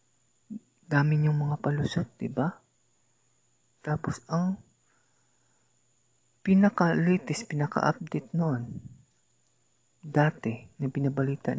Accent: Filipino